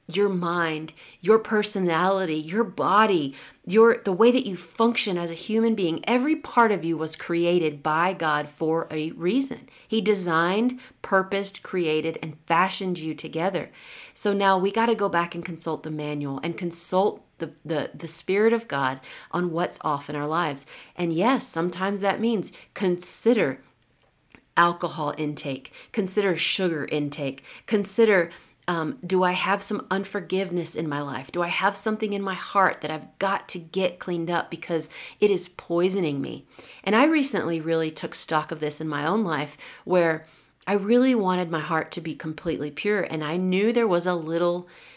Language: English